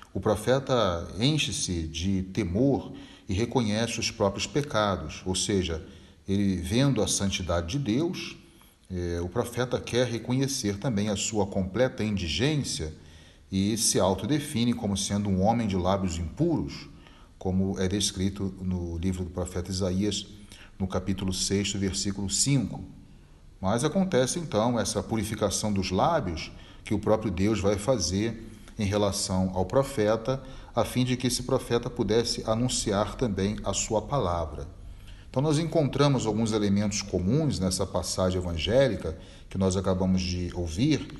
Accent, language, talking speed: Brazilian, Portuguese, 135 wpm